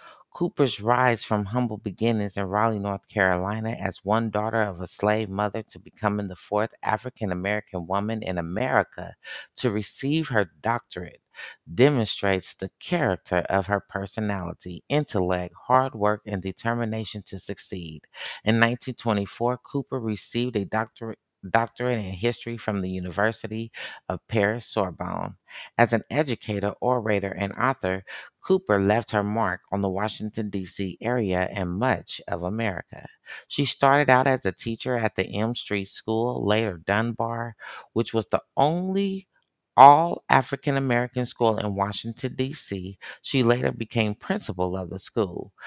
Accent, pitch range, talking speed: American, 100-120 Hz, 140 wpm